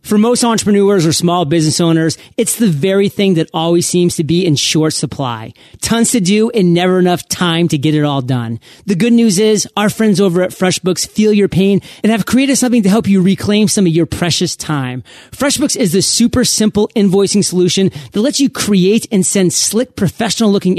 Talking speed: 210 wpm